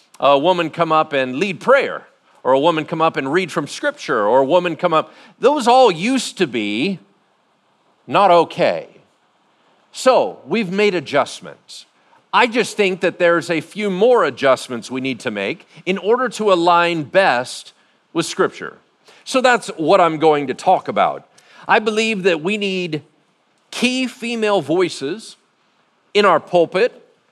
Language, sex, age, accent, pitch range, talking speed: English, male, 50-69, American, 160-210 Hz, 155 wpm